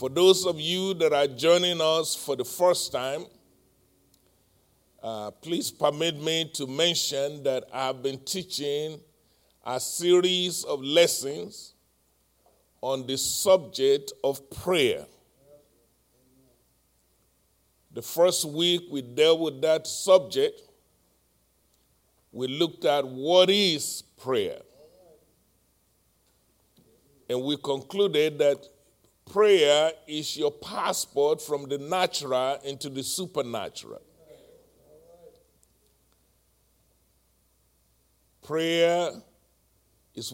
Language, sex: English, male